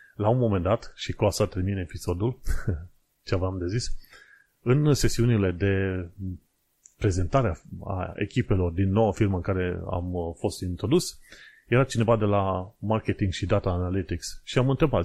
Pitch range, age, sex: 95-125 Hz, 30-49, male